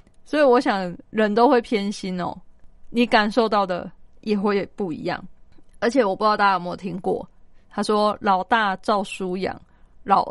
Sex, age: female, 20-39